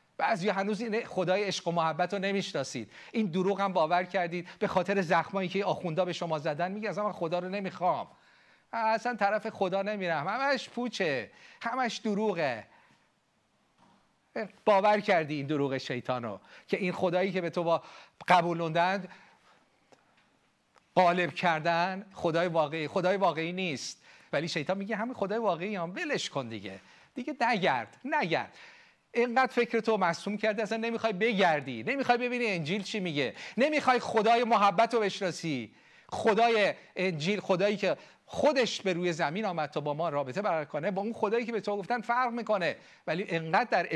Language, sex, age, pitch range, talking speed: Persian, male, 40-59, 155-210 Hz, 155 wpm